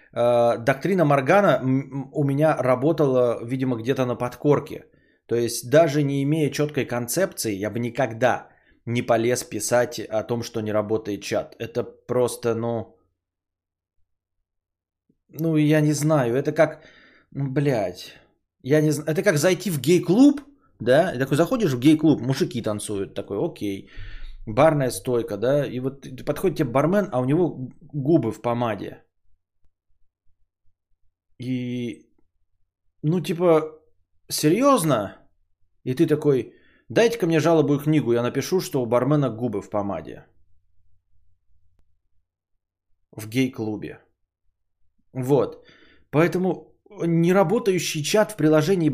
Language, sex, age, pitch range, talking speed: Bulgarian, male, 20-39, 100-155 Hz, 120 wpm